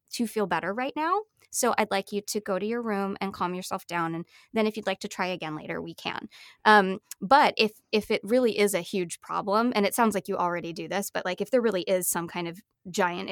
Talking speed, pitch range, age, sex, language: 255 wpm, 185-220 Hz, 20-39, female, English